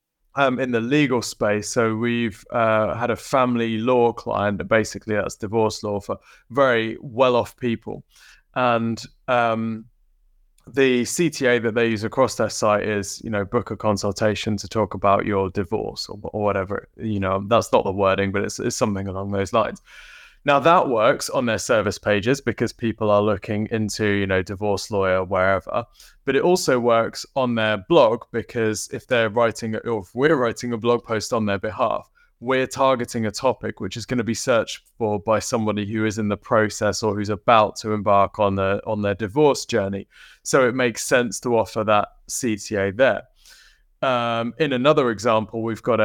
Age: 20-39